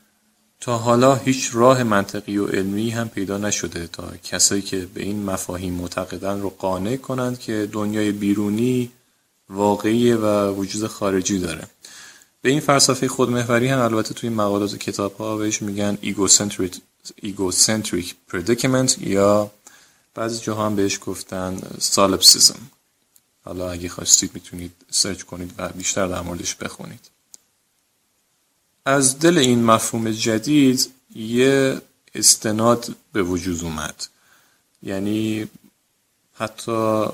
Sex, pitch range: male, 95-120 Hz